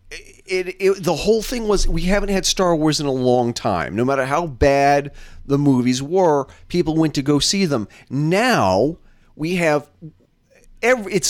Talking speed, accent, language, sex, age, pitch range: 180 wpm, American, English, male, 40-59, 125-200 Hz